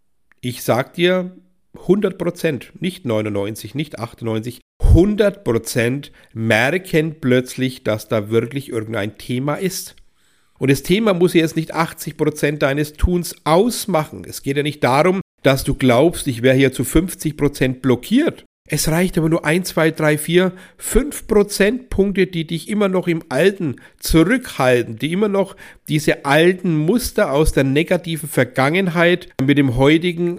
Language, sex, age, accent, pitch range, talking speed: German, male, 50-69, German, 135-185 Hz, 140 wpm